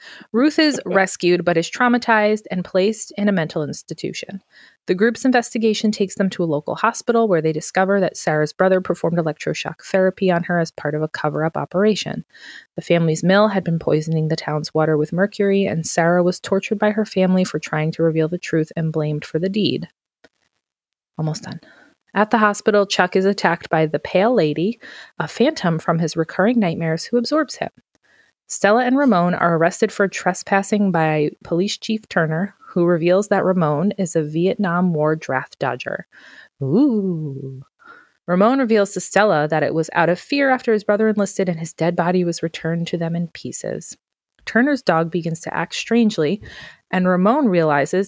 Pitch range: 165-210 Hz